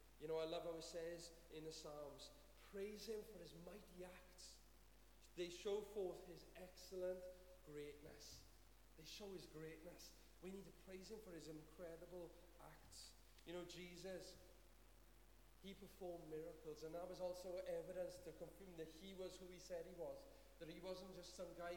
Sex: male